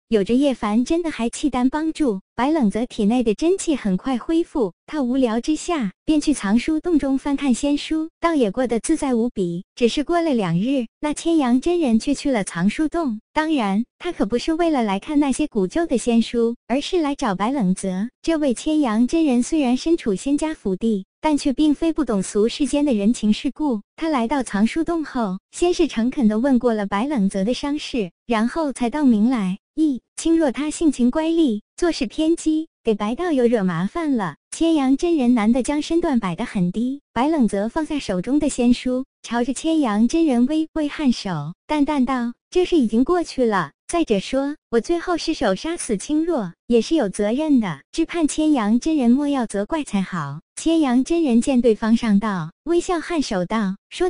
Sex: male